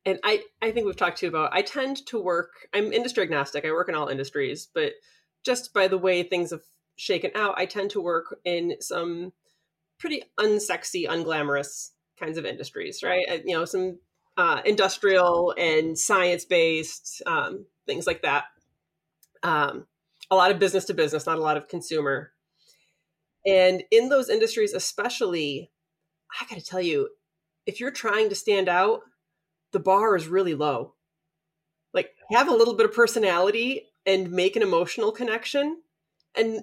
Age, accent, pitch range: 30-49, American, 175-280 Hz